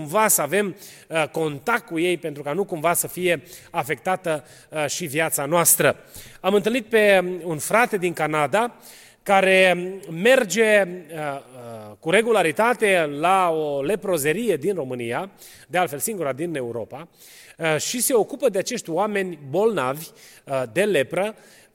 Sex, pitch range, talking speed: male, 155-205 Hz, 125 wpm